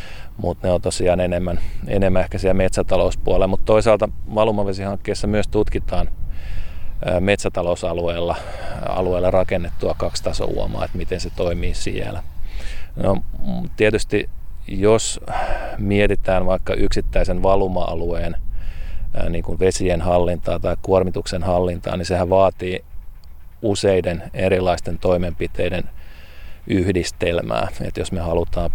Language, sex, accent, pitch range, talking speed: Finnish, male, native, 85-95 Hz, 100 wpm